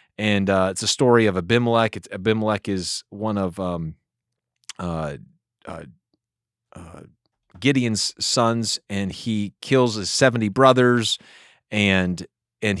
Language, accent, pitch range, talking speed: English, American, 100-135 Hz, 120 wpm